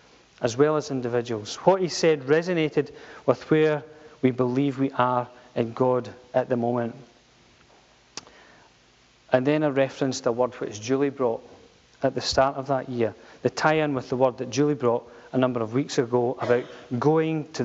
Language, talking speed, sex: English, 170 wpm, male